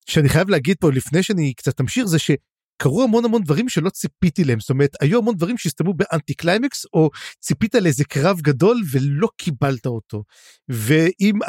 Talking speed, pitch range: 170 wpm, 155-215 Hz